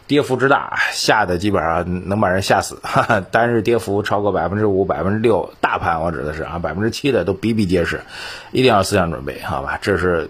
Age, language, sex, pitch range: 30-49, Chinese, male, 95-120 Hz